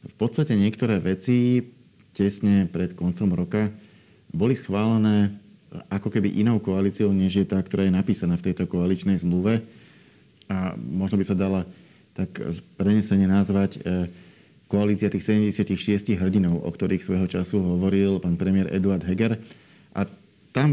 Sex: male